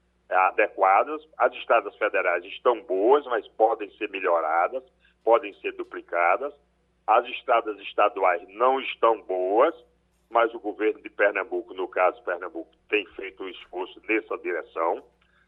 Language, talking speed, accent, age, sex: Portuguese, 130 wpm, Brazilian, 60-79, male